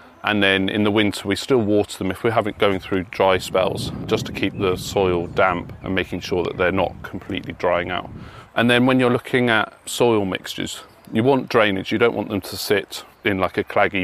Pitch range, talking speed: 95-105 Hz, 220 wpm